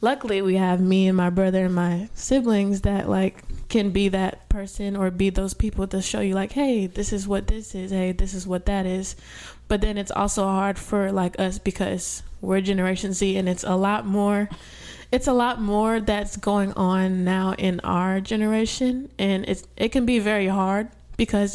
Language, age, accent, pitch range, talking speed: English, 20-39, American, 190-215 Hz, 200 wpm